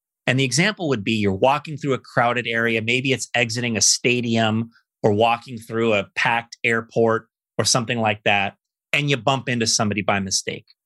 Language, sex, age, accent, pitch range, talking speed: English, male, 30-49, American, 110-140 Hz, 180 wpm